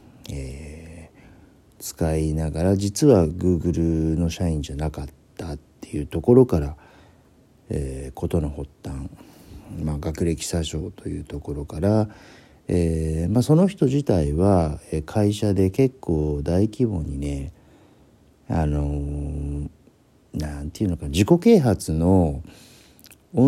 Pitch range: 80-100 Hz